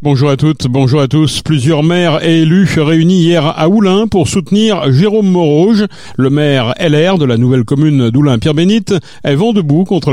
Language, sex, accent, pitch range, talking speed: French, male, French, 125-175 Hz, 180 wpm